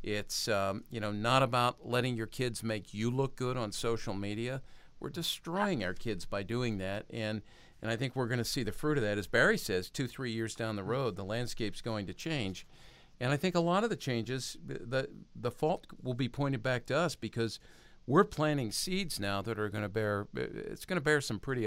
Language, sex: English, male